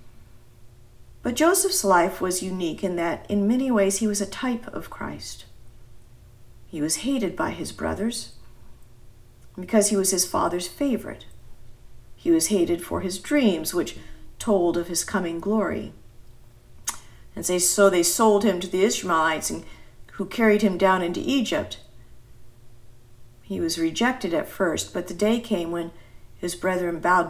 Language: English